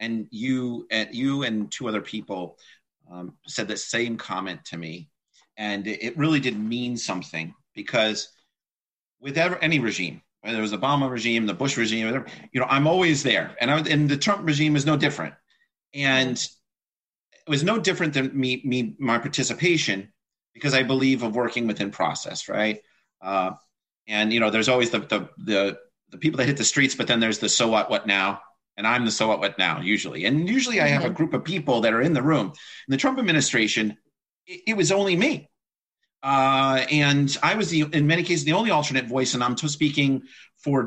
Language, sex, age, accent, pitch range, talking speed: English, male, 30-49, American, 110-155 Hz, 195 wpm